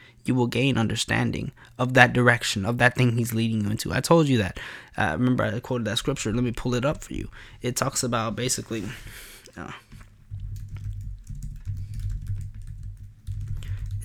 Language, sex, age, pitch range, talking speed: English, male, 20-39, 110-135 Hz, 155 wpm